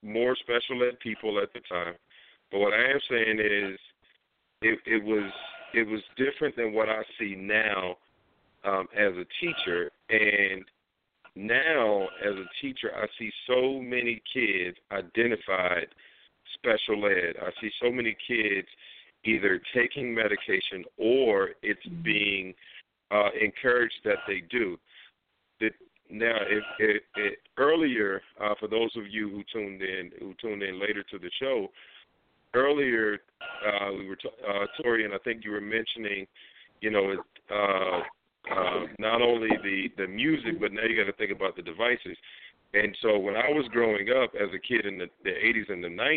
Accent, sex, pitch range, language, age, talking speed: American, male, 100-125 Hz, English, 50-69, 165 wpm